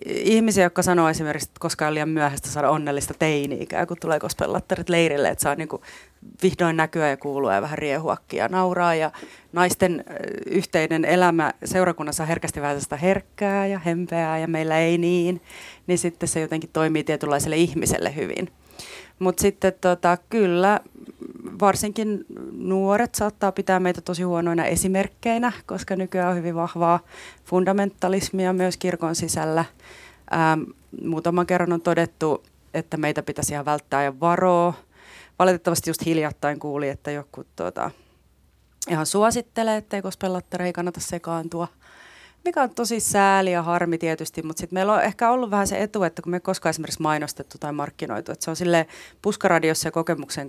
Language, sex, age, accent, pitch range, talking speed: Finnish, female, 30-49, native, 160-190 Hz, 150 wpm